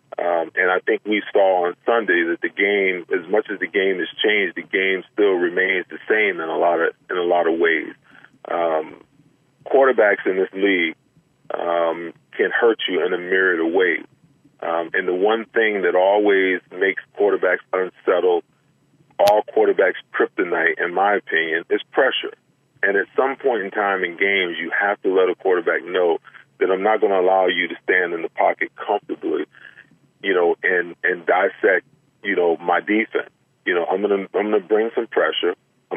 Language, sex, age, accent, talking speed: English, male, 40-59, American, 185 wpm